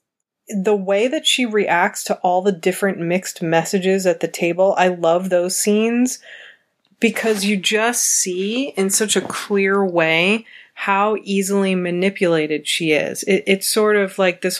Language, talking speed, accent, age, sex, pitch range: English, 155 wpm, American, 30-49, female, 175-205 Hz